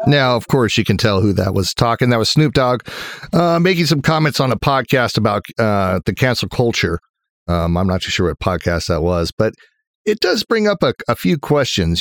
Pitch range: 90-125 Hz